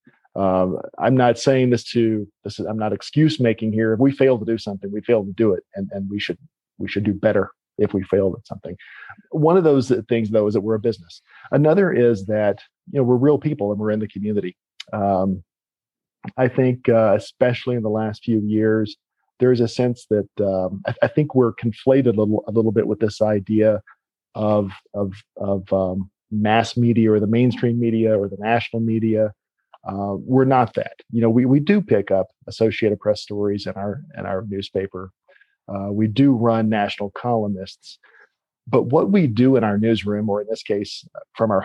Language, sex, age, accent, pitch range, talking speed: English, male, 40-59, American, 100-120 Hz, 205 wpm